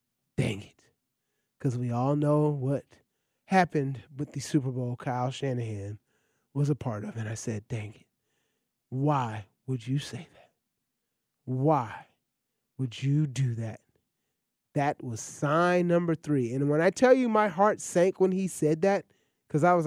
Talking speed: 160 wpm